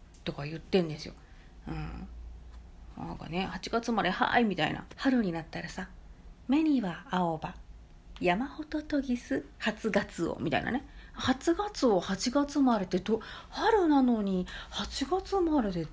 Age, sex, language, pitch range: 40-59, female, Japanese, 175-275 Hz